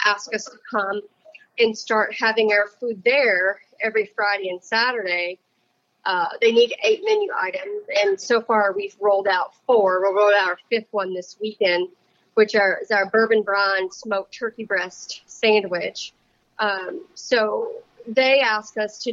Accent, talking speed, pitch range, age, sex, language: American, 155 wpm, 195-235 Hz, 40-59, female, English